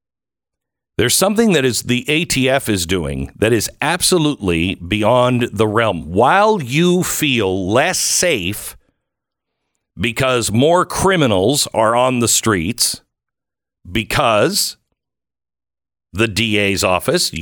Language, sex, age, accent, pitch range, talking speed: English, male, 50-69, American, 105-160 Hz, 105 wpm